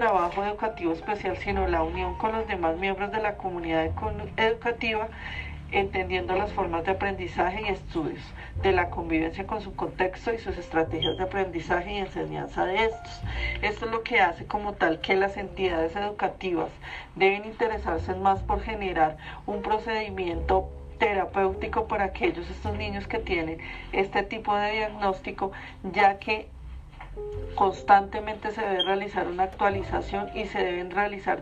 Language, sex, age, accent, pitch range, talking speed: Spanish, female, 40-59, Colombian, 180-215 Hz, 145 wpm